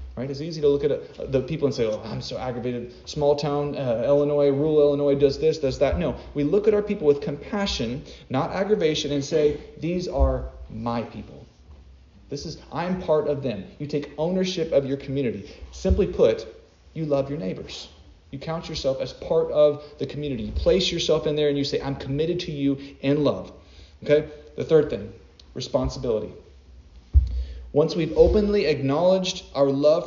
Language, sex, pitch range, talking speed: English, male, 125-170 Hz, 180 wpm